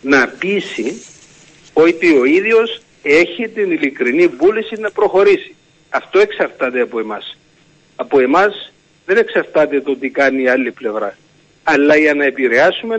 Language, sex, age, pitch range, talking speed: Greek, male, 60-79, 145-235 Hz, 135 wpm